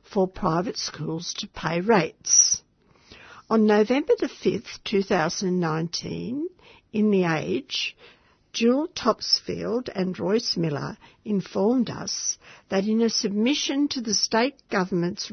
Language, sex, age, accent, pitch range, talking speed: English, female, 60-79, Australian, 185-230 Hz, 115 wpm